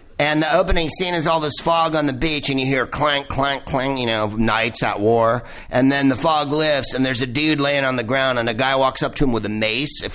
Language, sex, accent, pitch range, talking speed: English, male, American, 115-145 Hz, 270 wpm